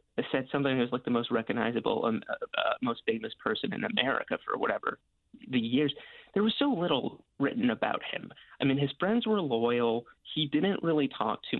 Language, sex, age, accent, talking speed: English, male, 30-49, American, 195 wpm